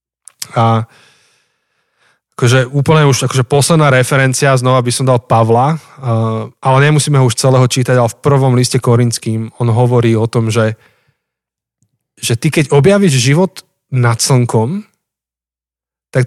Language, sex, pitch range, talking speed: Slovak, male, 115-140 Hz, 125 wpm